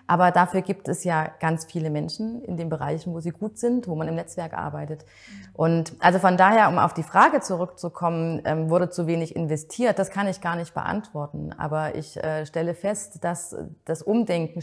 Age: 30-49